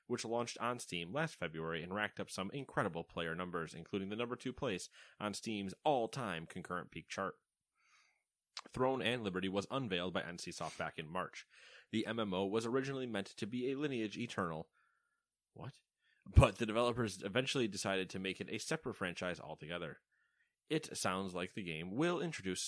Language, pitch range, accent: English, 90-110 Hz, American